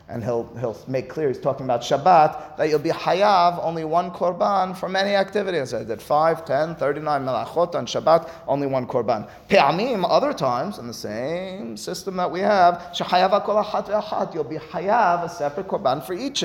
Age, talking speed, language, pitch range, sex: 30-49, 190 wpm, English, 130-190 Hz, male